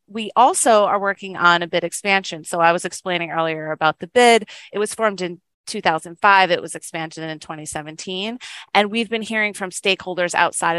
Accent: American